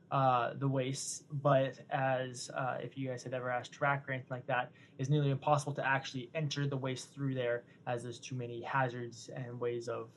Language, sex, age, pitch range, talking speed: English, male, 20-39, 125-145 Hz, 205 wpm